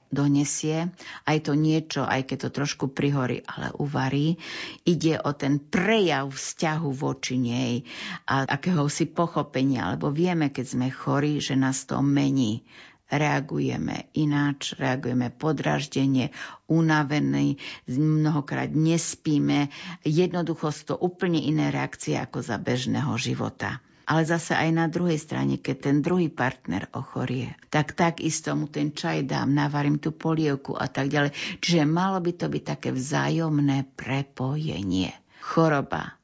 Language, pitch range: Slovak, 130-155 Hz